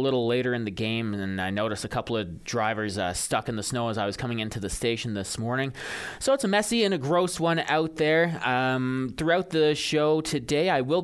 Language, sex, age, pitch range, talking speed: English, male, 20-39, 115-150 Hz, 240 wpm